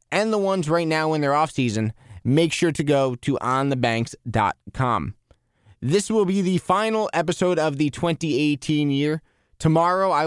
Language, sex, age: English, male, 20-39